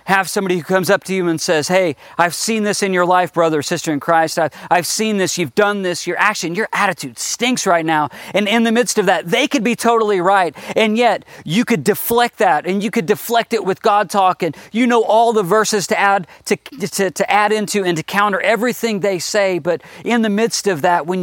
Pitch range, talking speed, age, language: 165-225 Hz, 235 wpm, 40-59, English